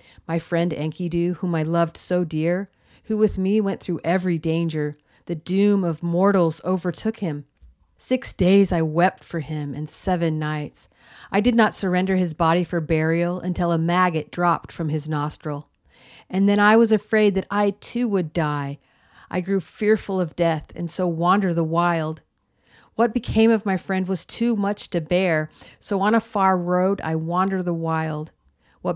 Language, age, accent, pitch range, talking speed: English, 40-59, American, 160-195 Hz, 175 wpm